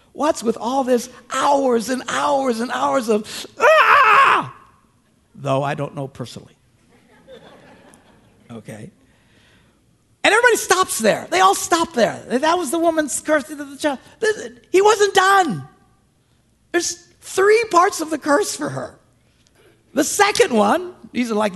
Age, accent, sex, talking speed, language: 50-69, American, male, 135 wpm, English